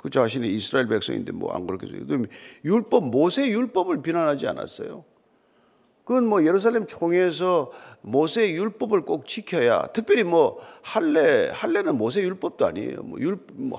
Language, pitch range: Korean, 175-265 Hz